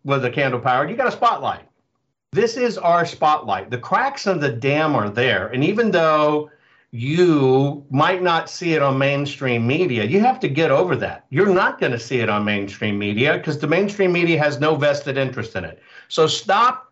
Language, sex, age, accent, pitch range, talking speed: English, male, 50-69, American, 130-180 Hz, 200 wpm